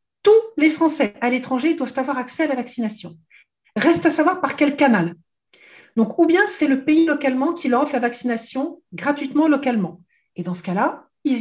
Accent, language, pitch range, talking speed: French, French, 215-310 Hz, 190 wpm